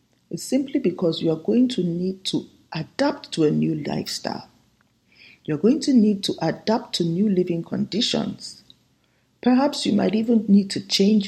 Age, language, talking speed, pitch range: 50-69, English, 165 wpm, 165-230 Hz